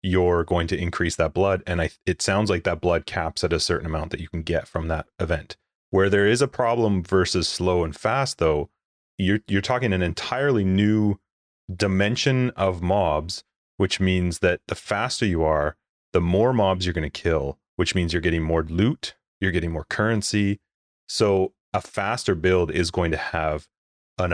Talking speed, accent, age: 190 wpm, American, 30-49